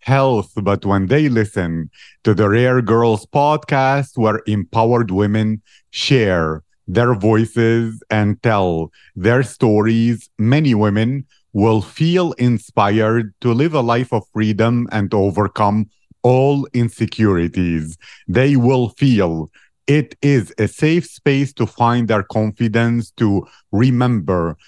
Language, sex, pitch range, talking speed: English, male, 105-130 Hz, 120 wpm